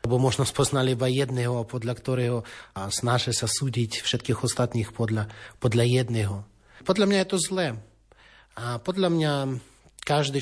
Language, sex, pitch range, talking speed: Slovak, male, 120-145 Hz, 140 wpm